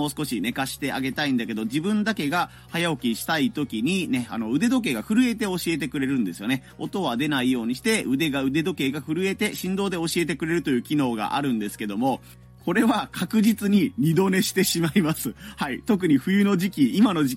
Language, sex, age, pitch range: Japanese, male, 30-49, 135-225 Hz